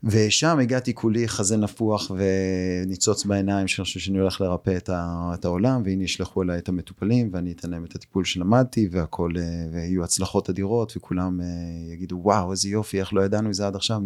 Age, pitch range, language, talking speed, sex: 30-49, 90-110 Hz, Hebrew, 180 wpm, male